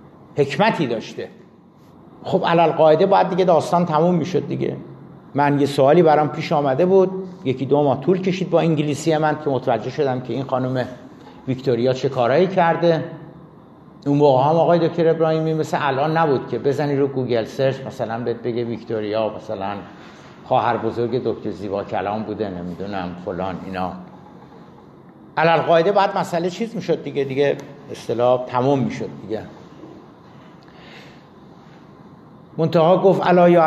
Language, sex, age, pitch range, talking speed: Persian, male, 50-69, 125-170 Hz, 145 wpm